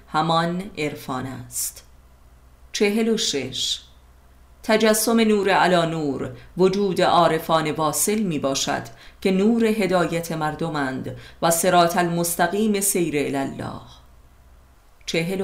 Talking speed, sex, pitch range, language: 95 wpm, female, 135-190 Hz, Persian